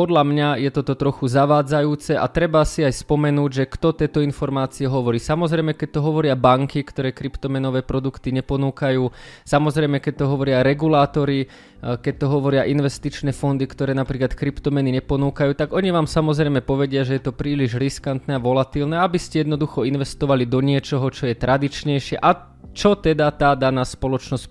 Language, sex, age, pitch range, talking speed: Slovak, male, 20-39, 135-150 Hz, 160 wpm